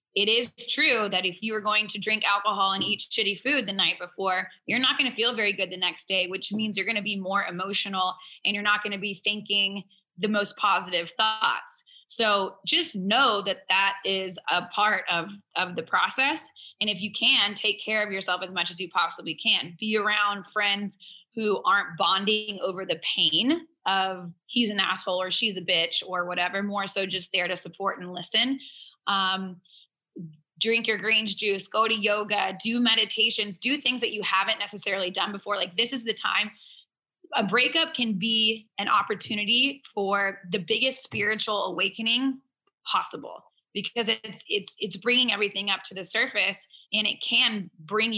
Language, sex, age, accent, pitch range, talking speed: English, female, 20-39, American, 190-220 Hz, 185 wpm